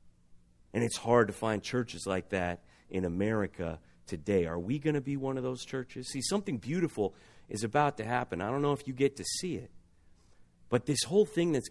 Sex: male